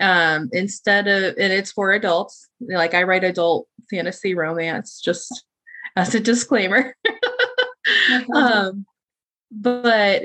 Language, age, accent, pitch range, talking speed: English, 30-49, American, 165-205 Hz, 110 wpm